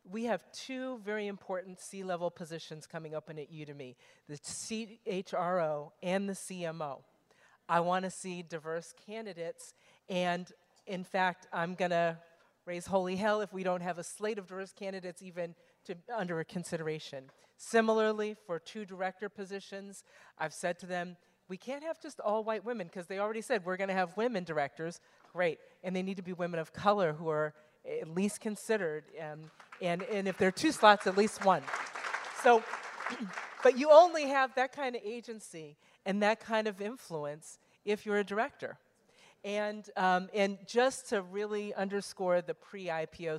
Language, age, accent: English, 40-59, American